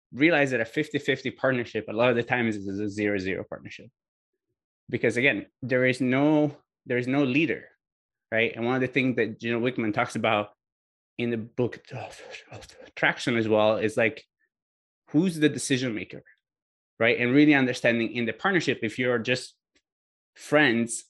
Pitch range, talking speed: 110-140 Hz, 165 wpm